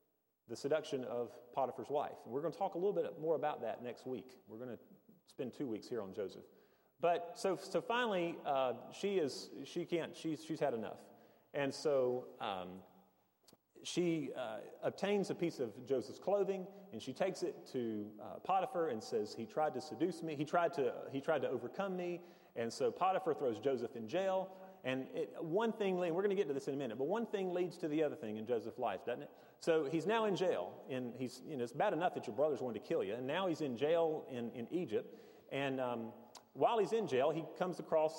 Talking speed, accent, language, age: 225 wpm, American, English, 30-49